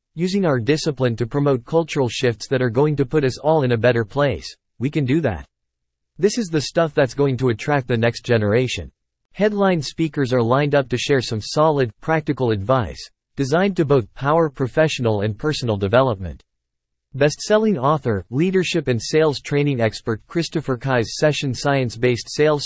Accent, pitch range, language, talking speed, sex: American, 110-155 Hz, English, 175 wpm, male